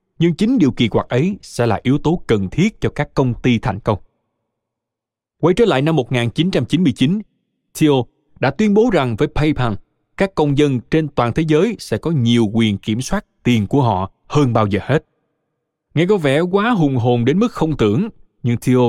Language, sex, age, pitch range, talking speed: Vietnamese, male, 20-39, 115-160 Hz, 195 wpm